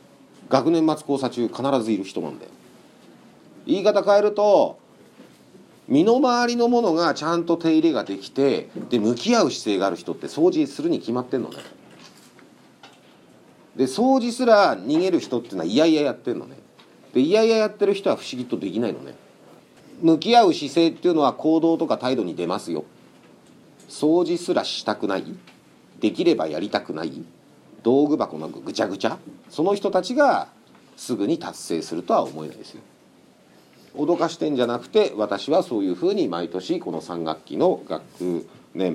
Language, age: Japanese, 40-59